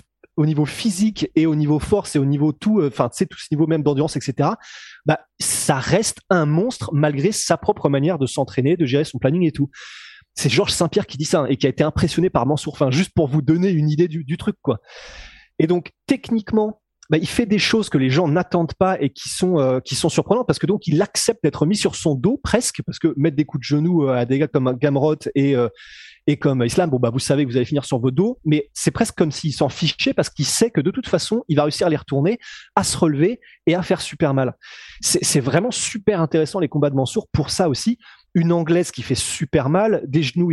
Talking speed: 250 wpm